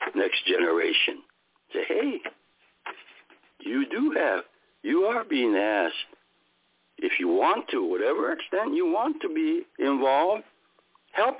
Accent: American